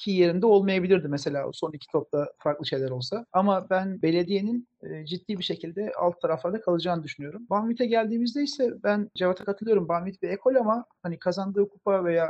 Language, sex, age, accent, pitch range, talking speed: Turkish, male, 40-59, native, 165-205 Hz, 165 wpm